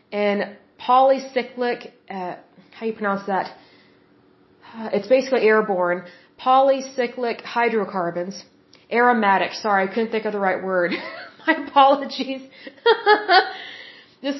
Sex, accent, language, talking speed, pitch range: female, American, Hindi, 100 wpm, 200-240 Hz